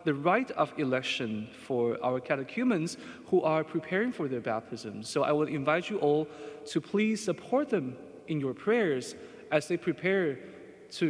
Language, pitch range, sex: English, 145-195 Hz, male